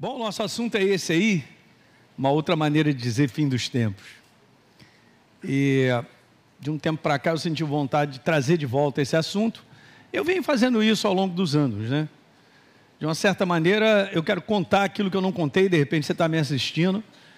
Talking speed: 195 wpm